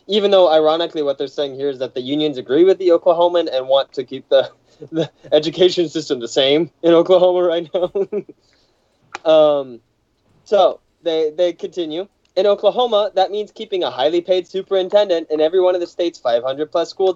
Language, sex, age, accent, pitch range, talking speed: English, male, 20-39, American, 135-185 Hz, 180 wpm